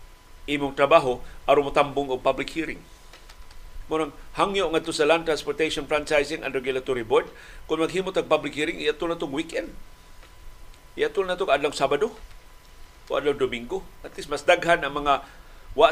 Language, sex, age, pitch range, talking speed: Filipino, male, 50-69, 140-180 Hz, 150 wpm